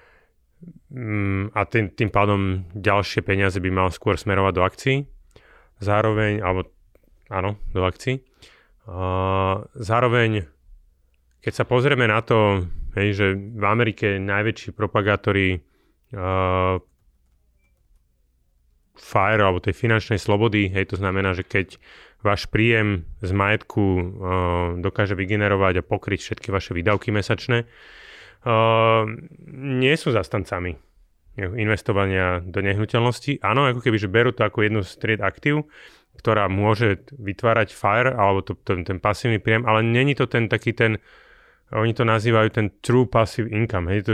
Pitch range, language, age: 95-115 Hz, Slovak, 30-49